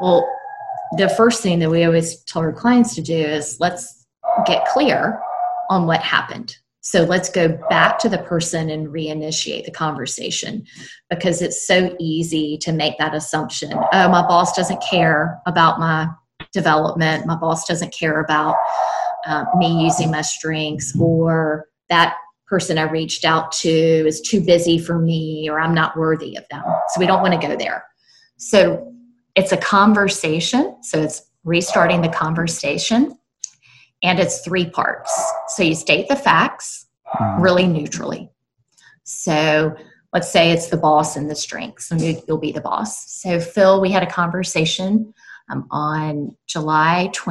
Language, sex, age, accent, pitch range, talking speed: English, female, 30-49, American, 155-185 Hz, 155 wpm